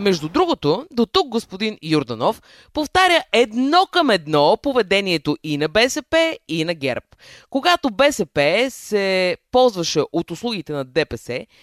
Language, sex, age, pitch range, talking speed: Bulgarian, female, 20-39, 155-260 Hz, 130 wpm